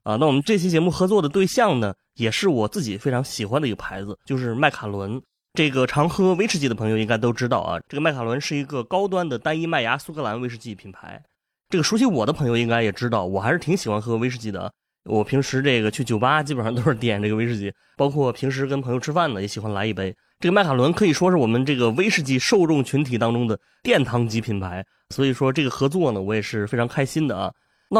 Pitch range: 115-170 Hz